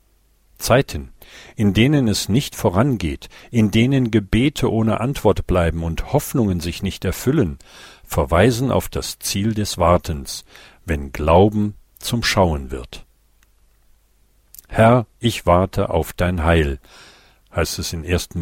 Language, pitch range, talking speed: German, 85-105 Hz, 125 wpm